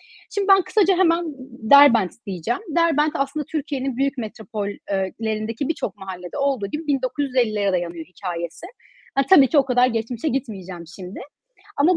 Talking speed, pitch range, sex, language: 140 wpm, 215-290 Hz, female, Turkish